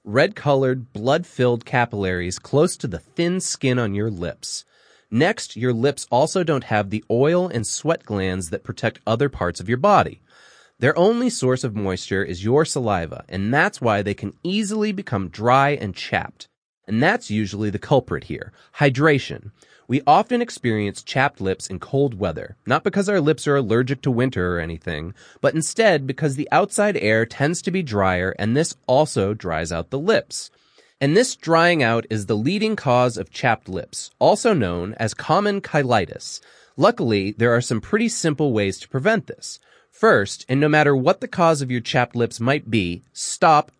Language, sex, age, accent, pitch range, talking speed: English, male, 30-49, American, 105-155 Hz, 175 wpm